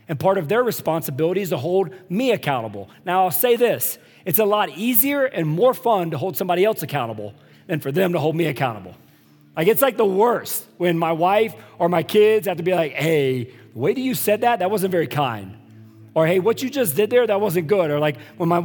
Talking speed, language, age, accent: 235 wpm, English, 40-59, American